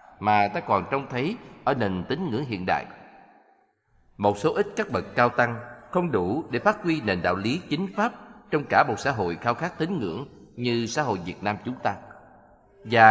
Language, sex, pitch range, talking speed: Vietnamese, male, 105-160 Hz, 205 wpm